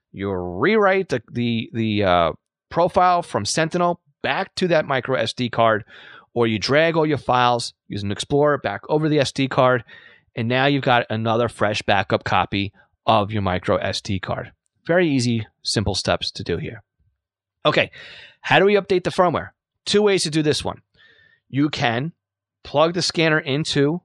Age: 30-49